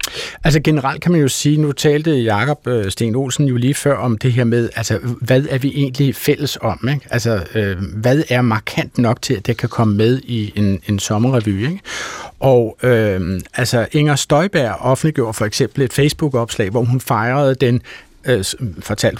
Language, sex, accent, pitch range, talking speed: Danish, male, native, 115-150 Hz, 185 wpm